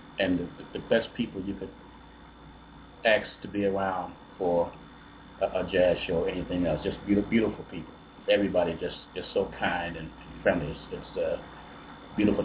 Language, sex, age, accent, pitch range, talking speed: English, male, 30-49, American, 90-110 Hz, 165 wpm